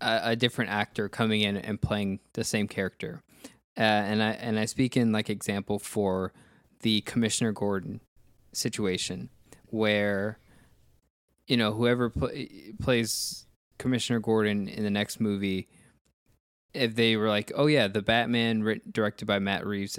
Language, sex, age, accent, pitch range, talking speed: English, male, 20-39, American, 105-125 Hz, 145 wpm